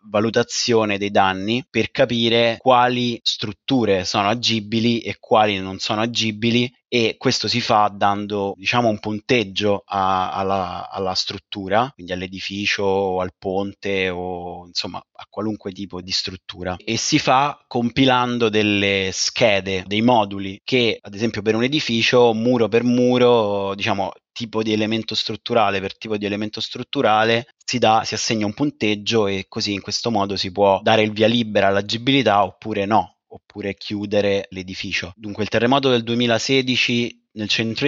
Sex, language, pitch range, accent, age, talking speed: male, Italian, 100-115 Hz, native, 20-39, 150 wpm